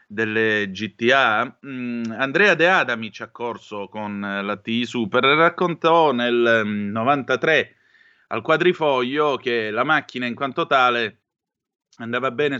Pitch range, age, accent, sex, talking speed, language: 105-135 Hz, 30-49, native, male, 120 wpm, Italian